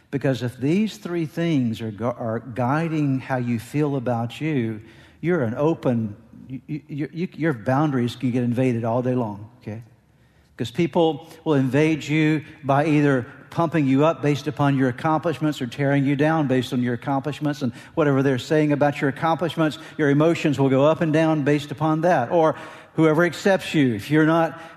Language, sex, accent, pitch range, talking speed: English, male, American, 150-190 Hz, 185 wpm